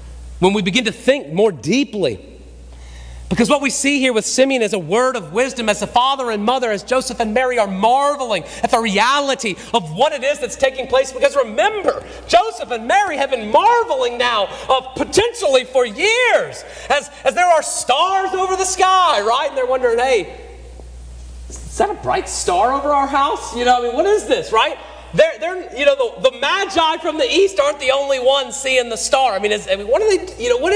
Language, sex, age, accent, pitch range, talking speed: English, male, 40-59, American, 200-325 Hz, 215 wpm